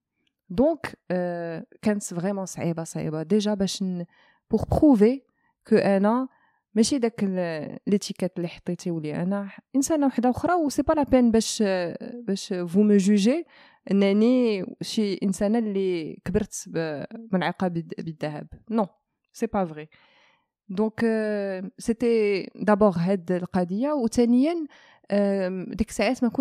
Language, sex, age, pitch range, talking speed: Arabic, female, 20-39, 175-225 Hz, 80 wpm